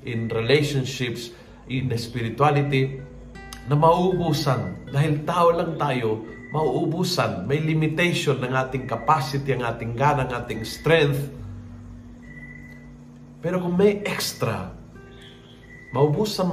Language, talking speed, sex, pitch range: Filipino, 95 wpm, male, 115-145 Hz